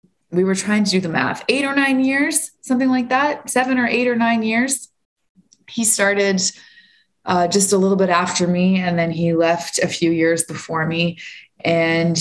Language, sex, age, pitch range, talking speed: English, female, 20-39, 170-230 Hz, 190 wpm